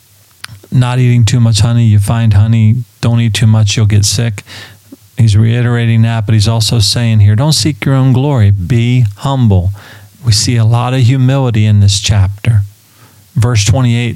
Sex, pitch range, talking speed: male, 105-125 Hz, 175 wpm